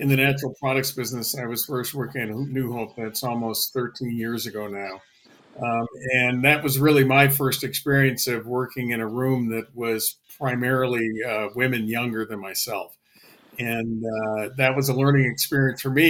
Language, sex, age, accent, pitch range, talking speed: English, male, 50-69, American, 120-135 Hz, 180 wpm